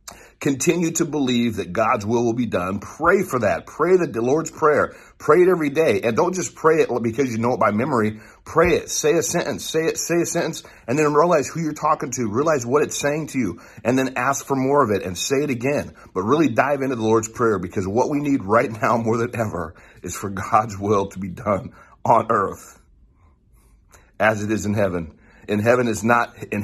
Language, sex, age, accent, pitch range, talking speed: English, male, 40-59, American, 105-140 Hz, 225 wpm